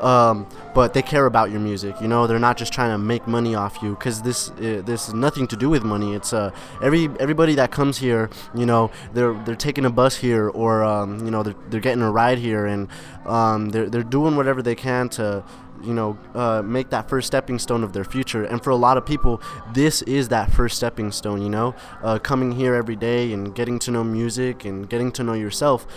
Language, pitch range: English, 110-130 Hz